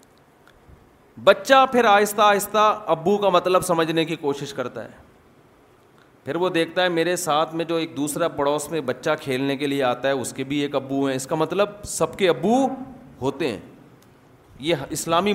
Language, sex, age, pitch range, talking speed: Urdu, male, 30-49, 140-190 Hz, 180 wpm